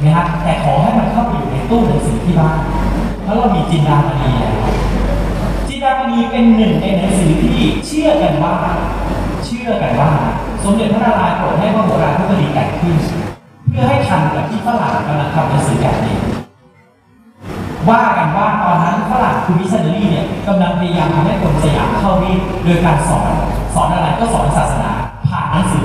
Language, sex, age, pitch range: English, male, 30-49, 155-205 Hz